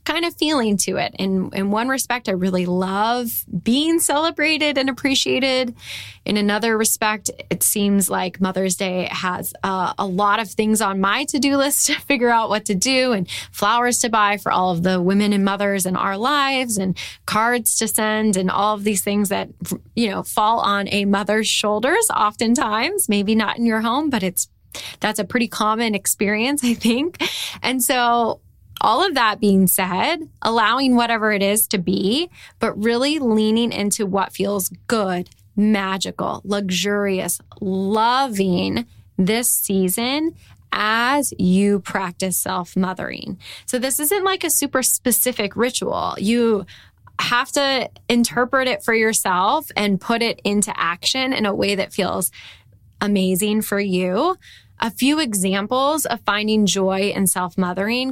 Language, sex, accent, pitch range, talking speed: English, female, American, 195-250 Hz, 155 wpm